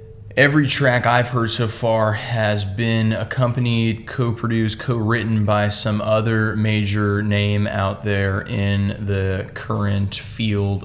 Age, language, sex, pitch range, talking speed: 20-39, English, male, 100-110 Hz, 120 wpm